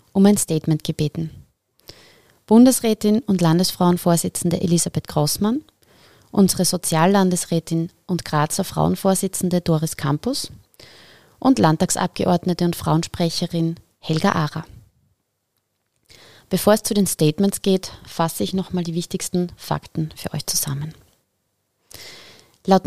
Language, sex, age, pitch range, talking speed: German, female, 30-49, 155-185 Hz, 100 wpm